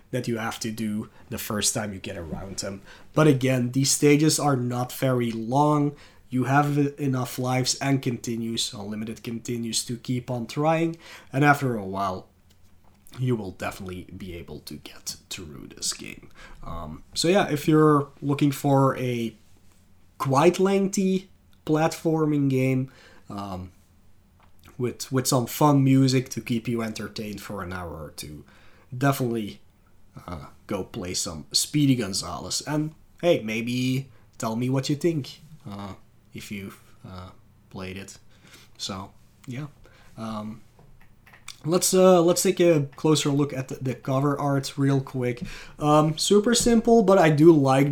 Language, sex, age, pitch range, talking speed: English, male, 20-39, 110-145 Hz, 145 wpm